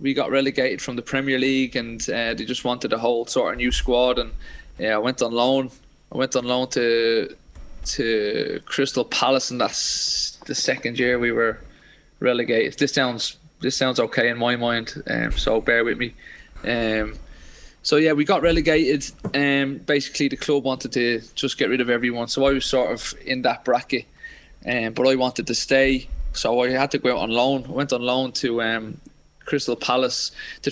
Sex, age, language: male, 20-39, English